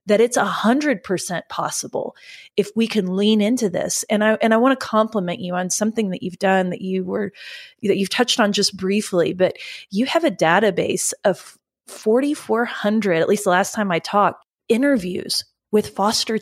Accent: American